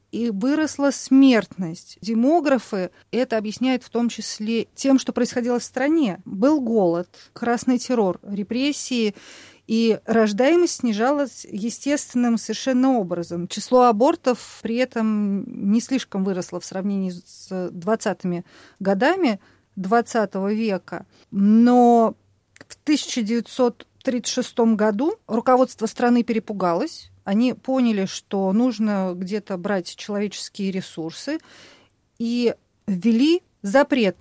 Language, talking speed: Russian, 105 wpm